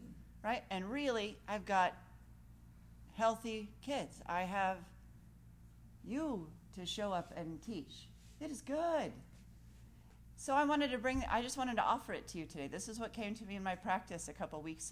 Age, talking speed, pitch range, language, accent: 40-59, 175 wpm, 155-220 Hz, English, American